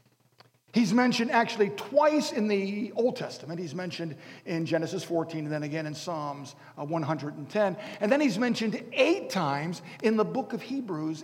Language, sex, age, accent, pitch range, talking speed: English, male, 50-69, American, 150-215 Hz, 160 wpm